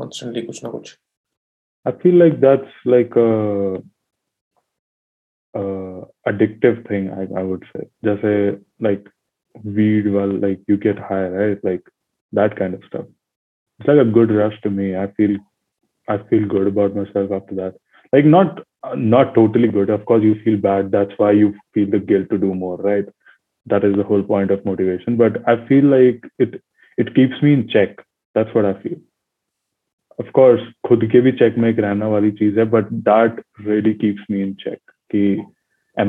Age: 20-39